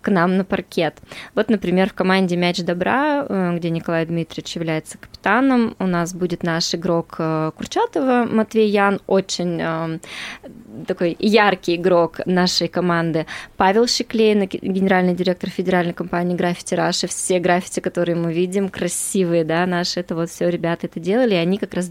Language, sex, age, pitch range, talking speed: Russian, female, 20-39, 170-205 Hz, 155 wpm